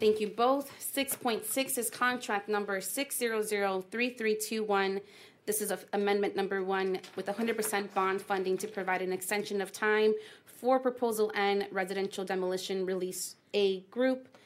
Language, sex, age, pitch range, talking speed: English, female, 30-49, 185-215 Hz, 135 wpm